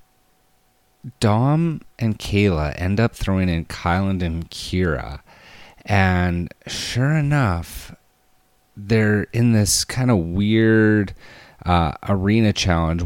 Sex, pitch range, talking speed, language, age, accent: male, 80-105 Hz, 100 wpm, English, 30-49, American